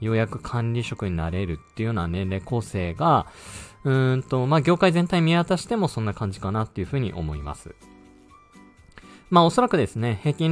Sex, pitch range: male, 95-155 Hz